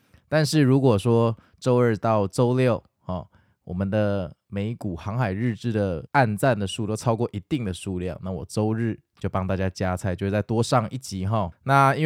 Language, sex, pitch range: Chinese, male, 95-125 Hz